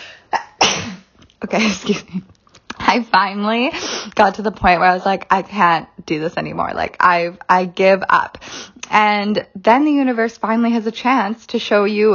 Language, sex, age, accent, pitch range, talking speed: English, female, 20-39, American, 185-220 Hz, 170 wpm